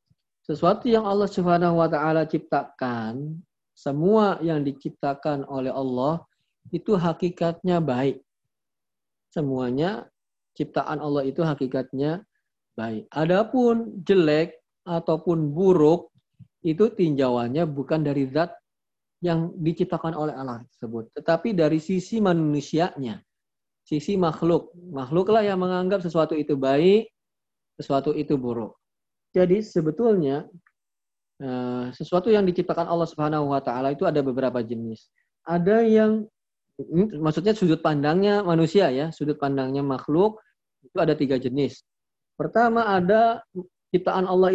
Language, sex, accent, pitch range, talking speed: Indonesian, male, native, 140-185 Hz, 110 wpm